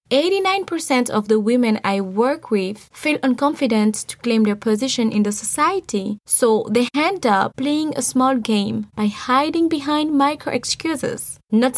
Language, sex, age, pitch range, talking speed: English, female, 20-39, 210-275 Hz, 155 wpm